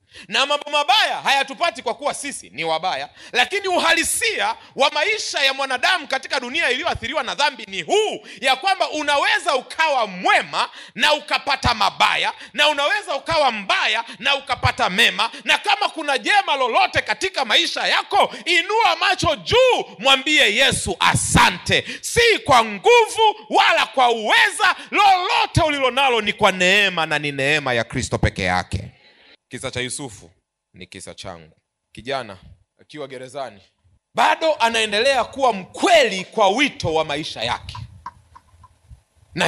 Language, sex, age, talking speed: Swahili, male, 40-59, 135 wpm